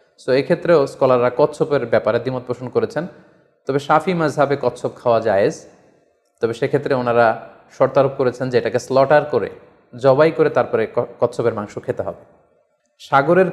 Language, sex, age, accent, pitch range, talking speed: Bengali, male, 30-49, native, 125-155 Hz, 135 wpm